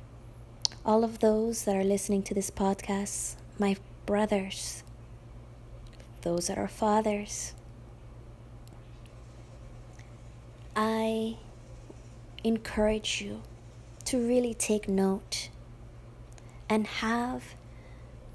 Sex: female